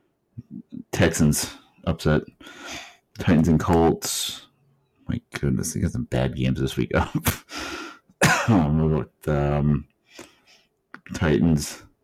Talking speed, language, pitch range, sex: 90 wpm, English, 75-85 Hz, male